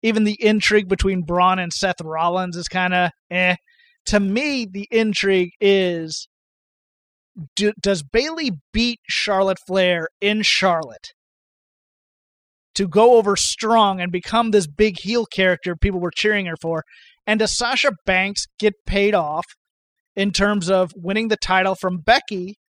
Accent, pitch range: American, 185-230 Hz